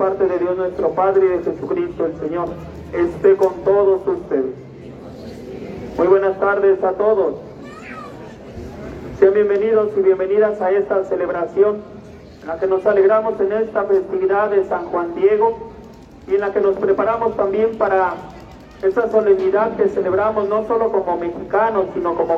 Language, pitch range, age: Spanish, 185-210 Hz, 40-59